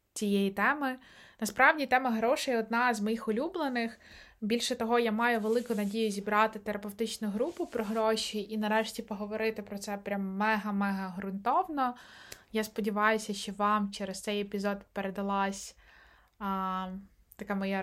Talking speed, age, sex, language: 135 wpm, 20-39, female, Ukrainian